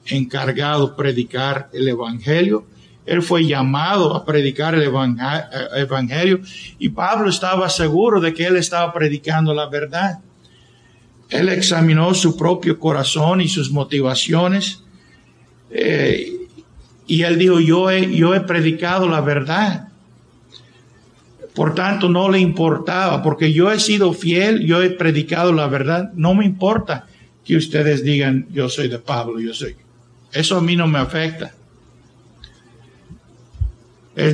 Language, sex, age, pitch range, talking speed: Spanish, male, 50-69, 135-175 Hz, 130 wpm